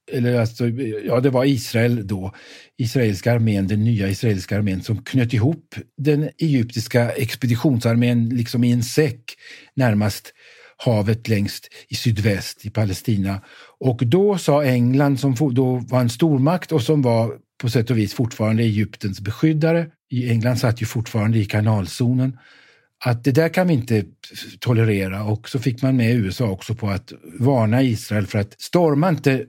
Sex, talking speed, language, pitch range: male, 155 wpm, Swedish, 110-135 Hz